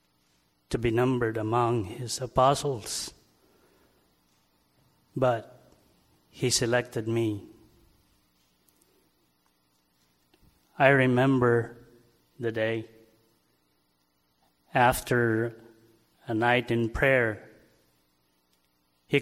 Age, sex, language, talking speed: 30-49, male, English, 60 wpm